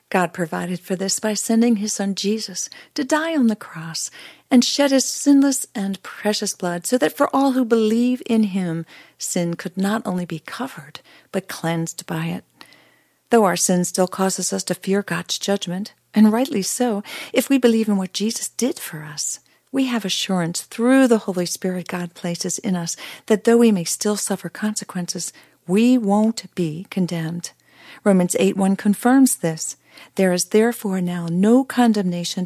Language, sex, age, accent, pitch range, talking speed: English, female, 40-59, American, 180-230 Hz, 175 wpm